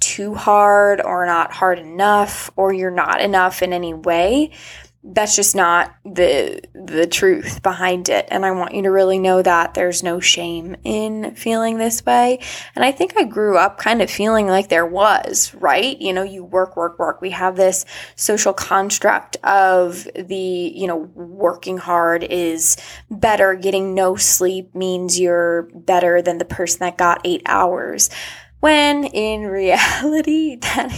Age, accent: 10-29, American